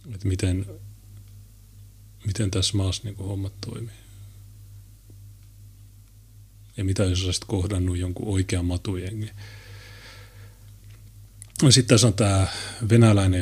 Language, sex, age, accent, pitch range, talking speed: Finnish, male, 30-49, native, 100-105 Hz, 90 wpm